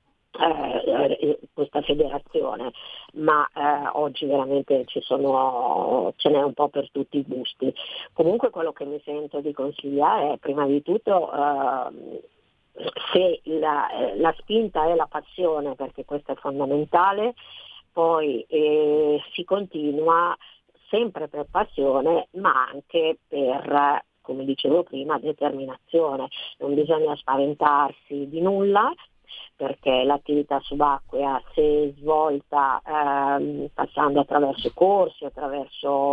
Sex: female